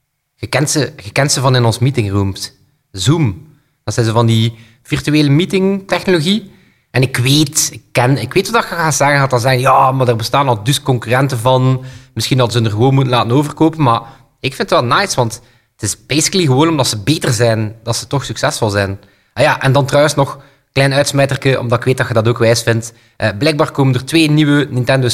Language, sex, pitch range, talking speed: Dutch, male, 120-155 Hz, 225 wpm